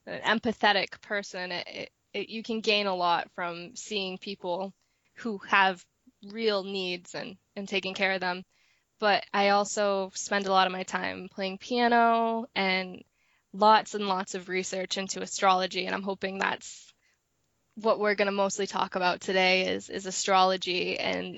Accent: American